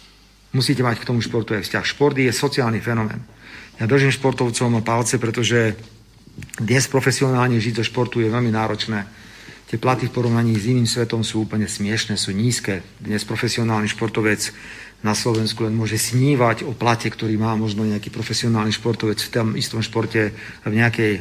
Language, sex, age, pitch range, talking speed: Slovak, male, 50-69, 110-130 Hz, 165 wpm